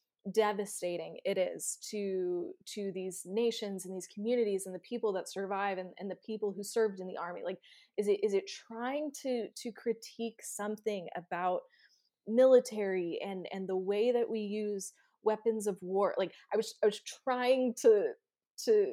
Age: 20-39